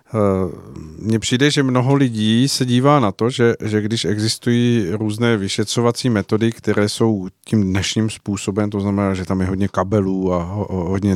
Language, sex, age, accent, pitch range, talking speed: Czech, male, 50-69, native, 105-120 Hz, 160 wpm